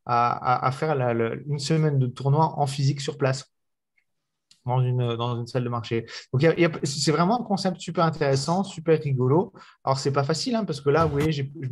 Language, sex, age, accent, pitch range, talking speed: French, male, 30-49, French, 125-150 Hz, 190 wpm